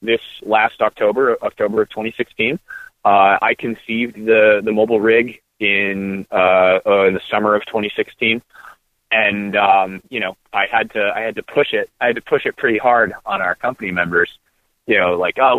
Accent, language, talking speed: American, English, 185 wpm